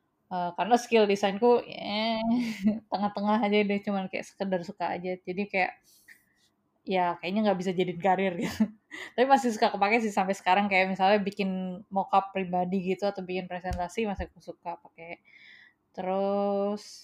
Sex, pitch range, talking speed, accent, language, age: female, 180-215 Hz, 150 wpm, native, Indonesian, 20-39